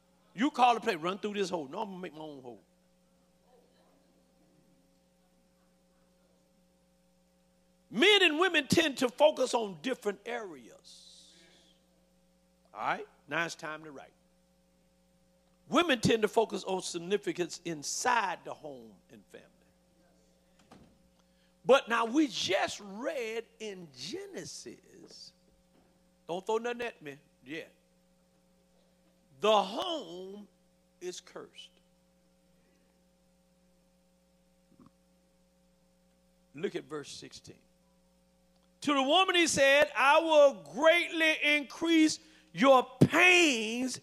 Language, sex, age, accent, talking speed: English, male, 50-69, American, 100 wpm